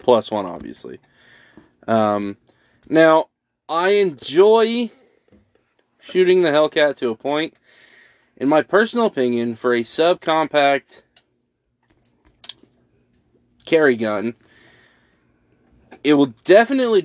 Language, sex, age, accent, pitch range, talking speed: English, male, 20-39, American, 115-155 Hz, 90 wpm